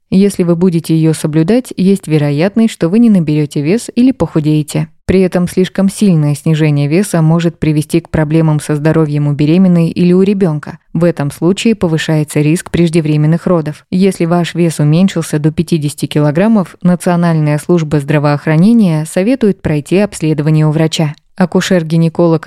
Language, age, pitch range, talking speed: Russian, 20-39, 155-185 Hz, 145 wpm